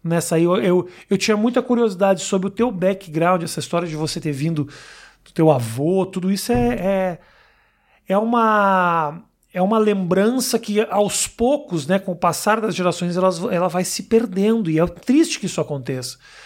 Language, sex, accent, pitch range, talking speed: Portuguese, male, Brazilian, 170-230 Hz, 170 wpm